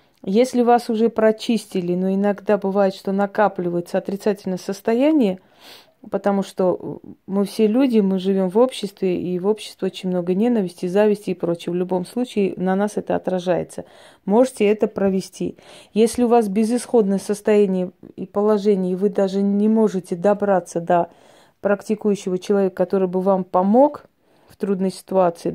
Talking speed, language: 145 wpm, Russian